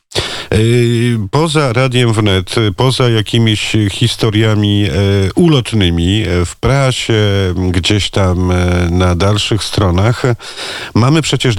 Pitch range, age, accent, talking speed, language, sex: 95-115 Hz, 50-69, native, 85 wpm, Polish, male